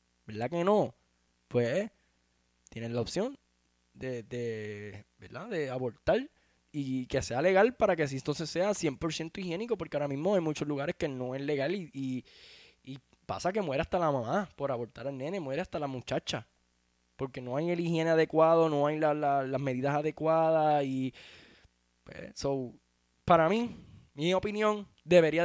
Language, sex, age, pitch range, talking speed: Spanish, male, 10-29, 115-175 Hz, 165 wpm